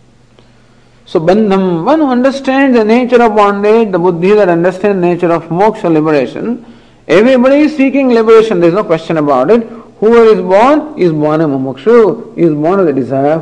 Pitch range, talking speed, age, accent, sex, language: 160-235 Hz, 190 wpm, 50-69, Indian, male, English